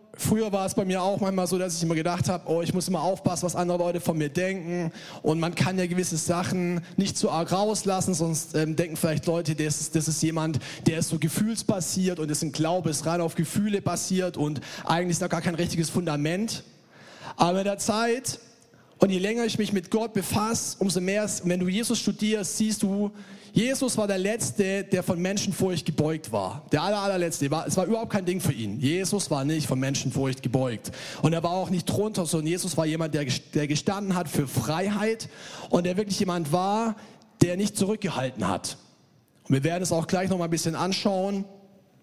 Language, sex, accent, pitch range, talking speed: German, male, German, 160-195 Hz, 205 wpm